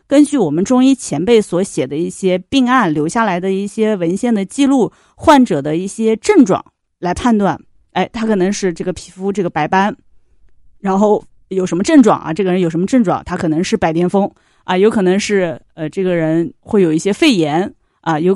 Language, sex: Chinese, female